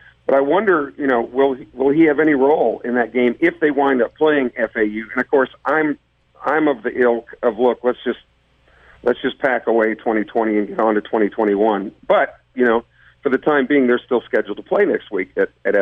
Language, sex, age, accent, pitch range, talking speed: English, male, 50-69, American, 115-155 Hz, 225 wpm